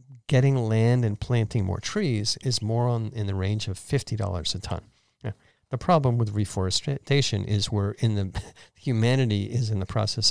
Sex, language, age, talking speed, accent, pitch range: male, English, 50-69, 175 wpm, American, 105-130 Hz